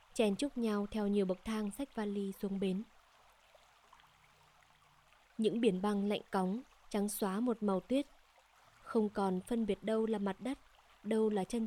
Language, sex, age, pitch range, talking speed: Vietnamese, female, 20-39, 200-235 Hz, 165 wpm